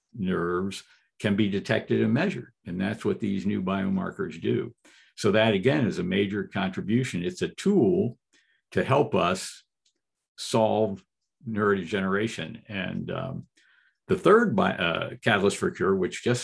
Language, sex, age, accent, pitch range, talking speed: English, male, 60-79, American, 100-130 Hz, 140 wpm